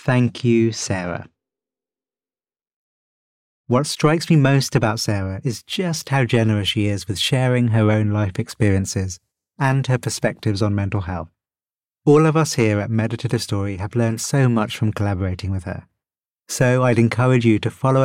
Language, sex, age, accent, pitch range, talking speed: English, male, 30-49, British, 105-130 Hz, 160 wpm